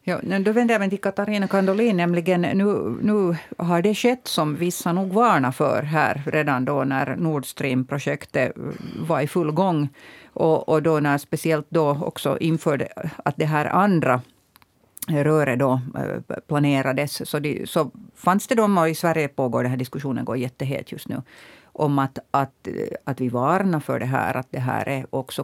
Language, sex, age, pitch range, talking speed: Swedish, female, 50-69, 145-200 Hz, 170 wpm